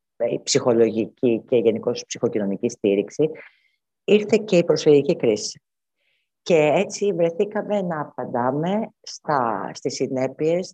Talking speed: 110 wpm